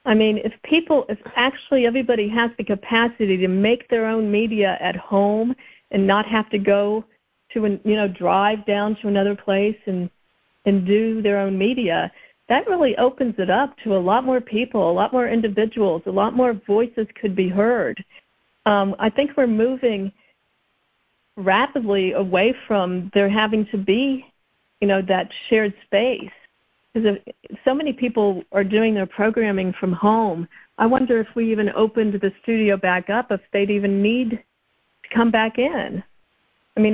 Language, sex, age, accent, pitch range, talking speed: English, female, 50-69, American, 200-230 Hz, 170 wpm